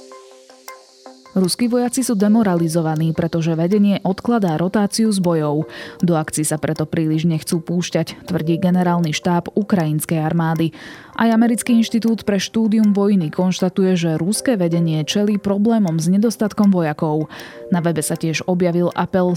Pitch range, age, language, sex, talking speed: 160-195 Hz, 20-39, Slovak, female, 135 wpm